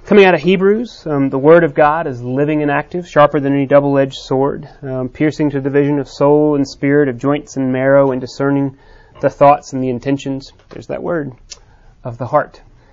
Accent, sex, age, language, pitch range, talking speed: American, male, 30-49, English, 120-140 Hz, 205 wpm